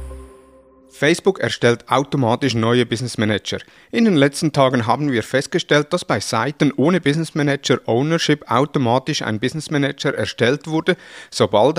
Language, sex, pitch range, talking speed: German, male, 115-150 Hz, 135 wpm